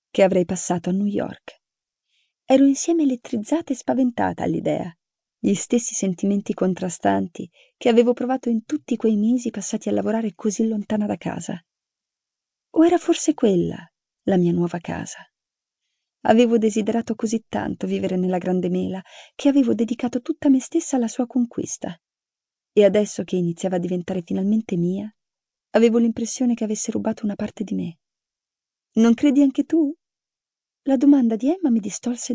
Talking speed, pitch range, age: 150 wpm, 190-255 Hz, 30-49